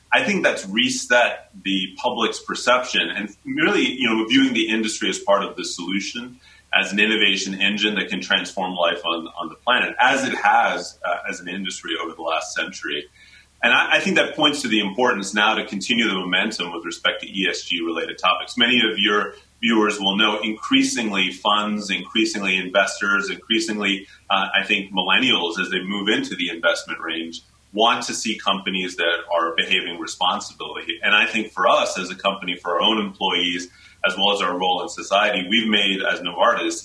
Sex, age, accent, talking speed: male, 30-49, American, 185 wpm